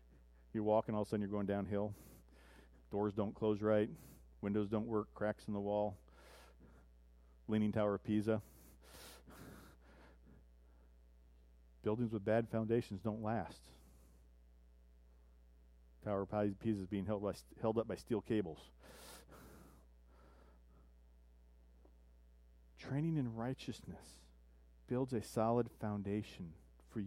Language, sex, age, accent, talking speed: English, male, 40-59, American, 105 wpm